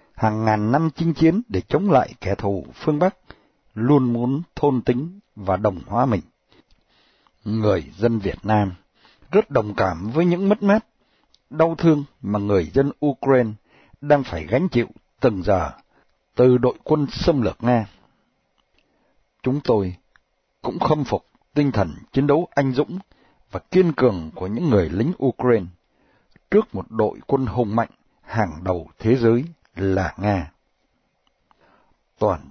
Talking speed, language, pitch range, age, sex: 150 wpm, Vietnamese, 105-145 Hz, 60-79, male